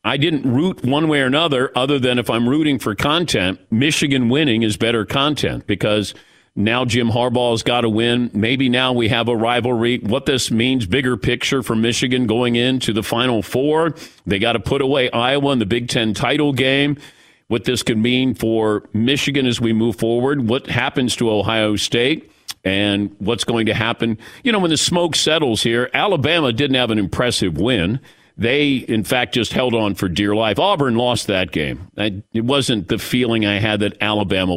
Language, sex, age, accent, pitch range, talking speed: English, male, 50-69, American, 110-140 Hz, 195 wpm